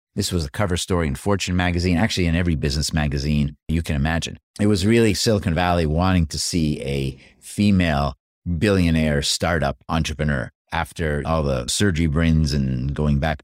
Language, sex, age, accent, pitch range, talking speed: English, male, 50-69, American, 75-100 Hz, 165 wpm